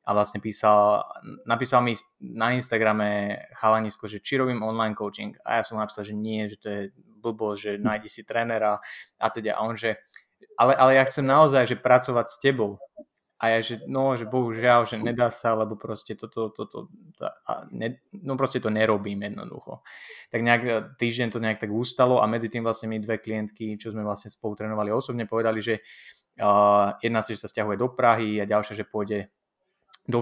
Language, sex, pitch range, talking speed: Slovak, male, 110-125 Hz, 195 wpm